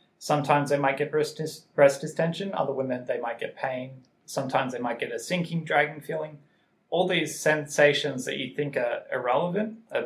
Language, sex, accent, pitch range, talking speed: English, male, Australian, 125-165 Hz, 180 wpm